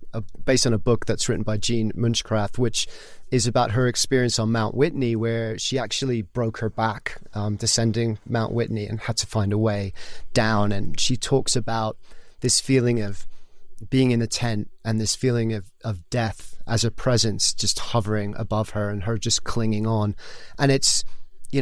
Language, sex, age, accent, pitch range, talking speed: English, male, 30-49, British, 110-130 Hz, 185 wpm